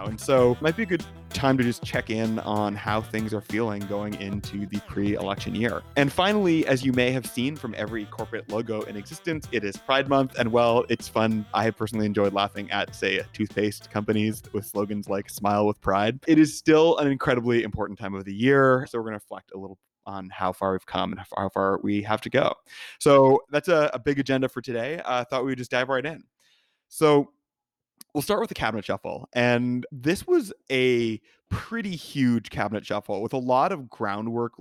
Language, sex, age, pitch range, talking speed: English, male, 20-39, 105-135 Hz, 215 wpm